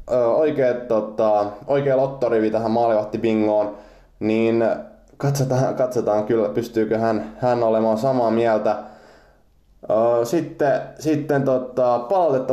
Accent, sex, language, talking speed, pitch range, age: native, male, Finnish, 95 wpm, 110-130 Hz, 20-39